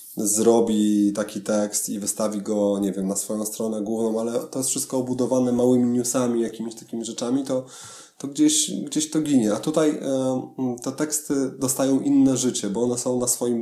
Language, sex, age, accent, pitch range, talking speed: Polish, male, 20-39, native, 105-130 Hz, 180 wpm